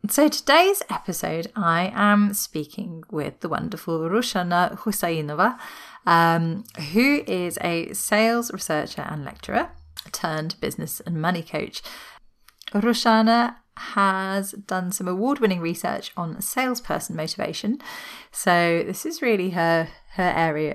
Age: 30-49